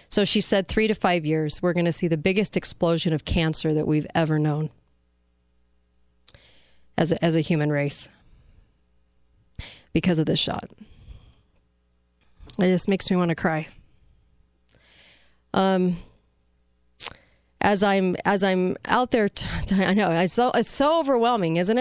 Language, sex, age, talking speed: English, female, 30-49, 145 wpm